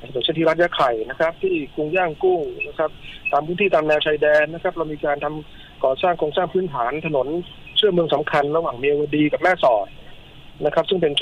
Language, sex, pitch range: Thai, male, 135-160 Hz